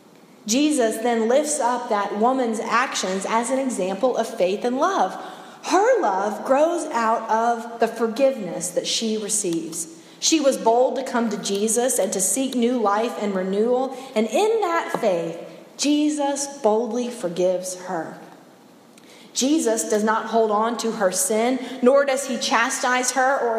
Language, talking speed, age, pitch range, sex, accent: English, 155 wpm, 30-49, 205-265 Hz, female, American